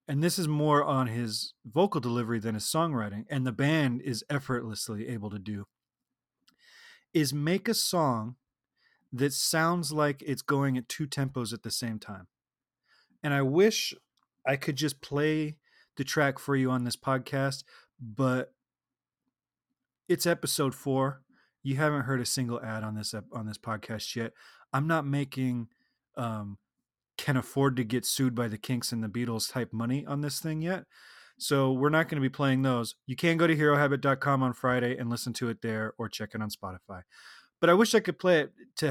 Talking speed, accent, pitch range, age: 185 wpm, American, 120-155 Hz, 30-49